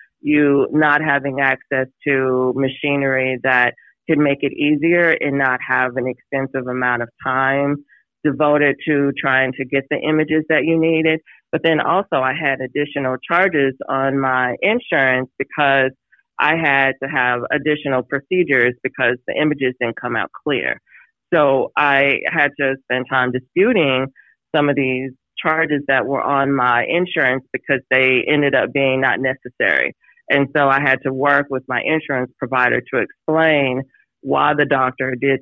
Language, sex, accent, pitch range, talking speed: English, female, American, 130-150 Hz, 155 wpm